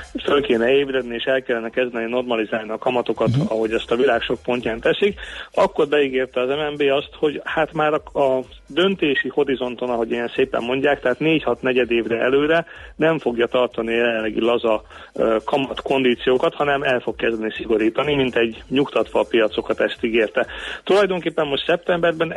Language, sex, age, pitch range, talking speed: Hungarian, male, 40-59, 125-150 Hz, 160 wpm